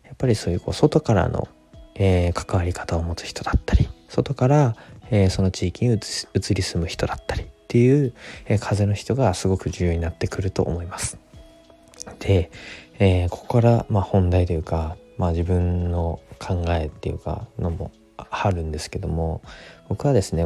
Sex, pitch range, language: male, 85-100 Hz, Japanese